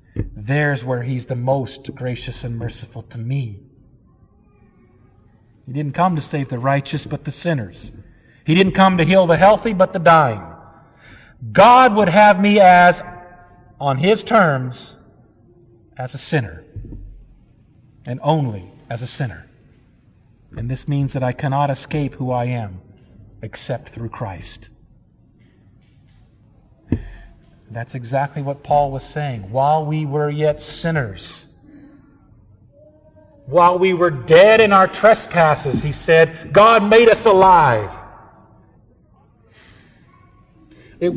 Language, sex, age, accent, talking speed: English, male, 50-69, American, 120 wpm